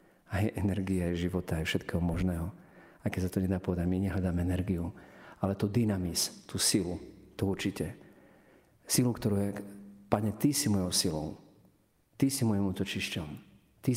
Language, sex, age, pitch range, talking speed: Slovak, male, 40-59, 95-110 Hz, 150 wpm